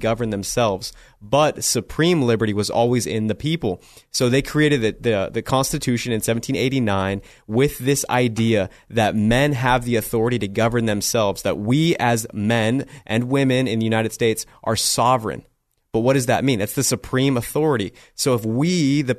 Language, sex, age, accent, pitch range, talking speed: English, male, 30-49, American, 115-145 Hz, 170 wpm